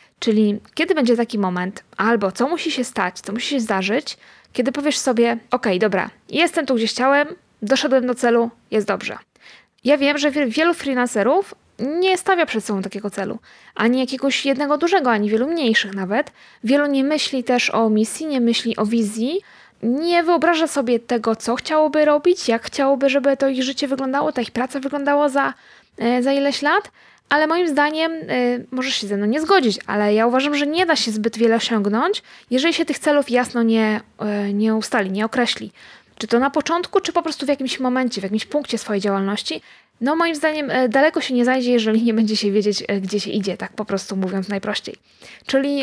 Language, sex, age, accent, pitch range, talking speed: Polish, female, 20-39, native, 220-290 Hz, 185 wpm